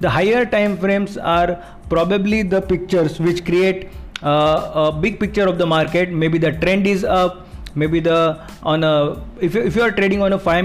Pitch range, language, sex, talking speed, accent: 150-185 Hz, English, male, 195 wpm, Indian